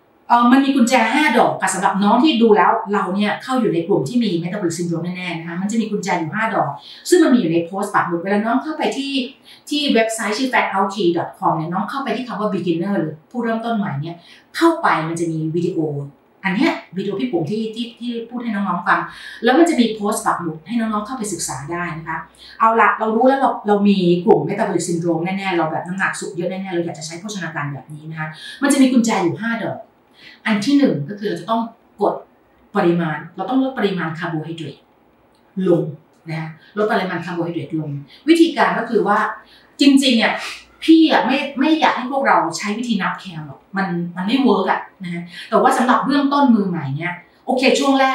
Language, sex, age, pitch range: Thai, female, 30-49, 170-245 Hz